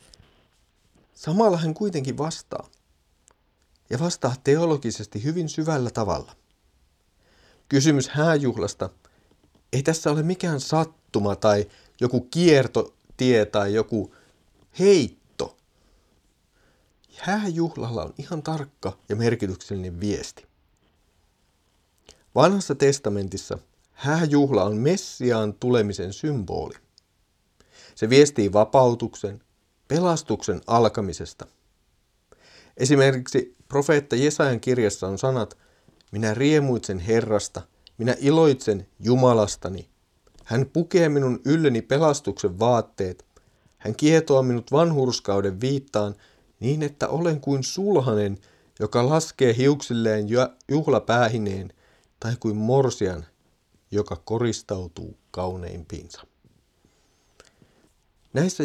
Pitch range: 100-145 Hz